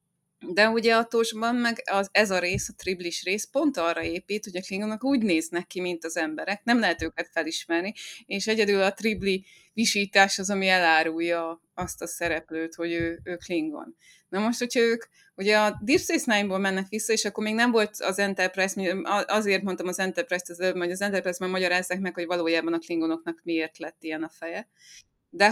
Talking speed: 190 wpm